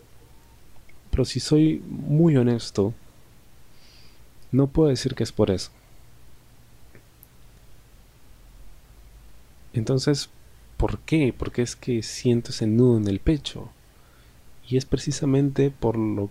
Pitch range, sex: 100-125 Hz, male